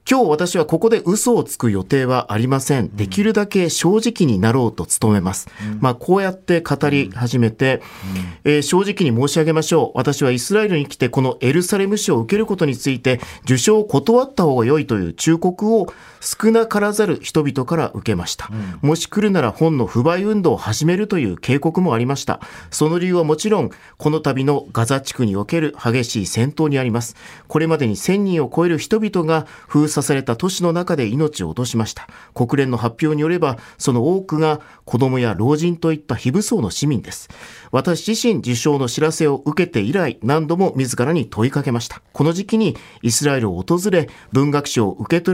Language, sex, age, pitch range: Japanese, male, 40-59, 125-175 Hz